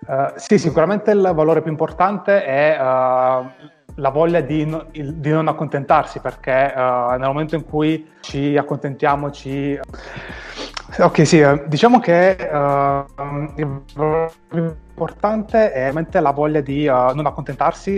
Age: 20-39